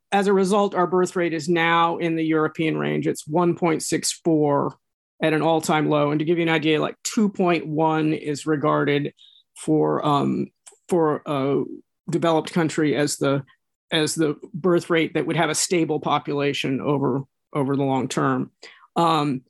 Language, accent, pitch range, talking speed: English, American, 155-190 Hz, 165 wpm